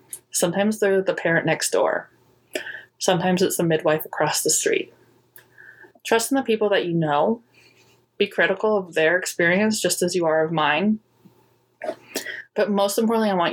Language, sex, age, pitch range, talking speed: English, female, 20-39, 160-190 Hz, 160 wpm